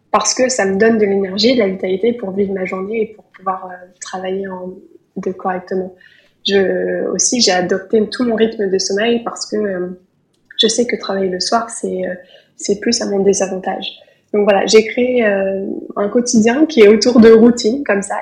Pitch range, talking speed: 190-220 Hz, 190 wpm